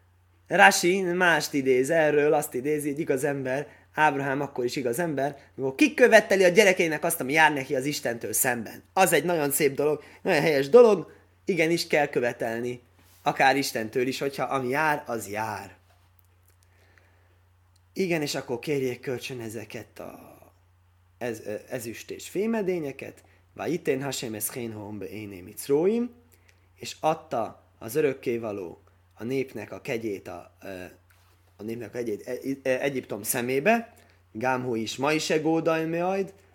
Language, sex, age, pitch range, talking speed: Hungarian, male, 20-39, 105-155 Hz, 135 wpm